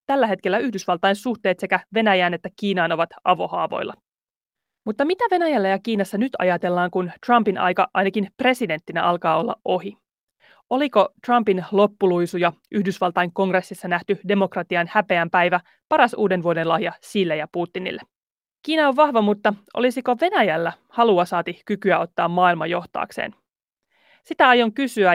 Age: 30-49